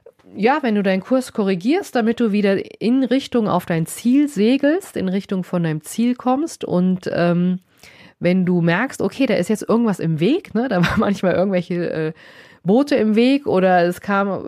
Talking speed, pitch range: 185 wpm, 175-230 Hz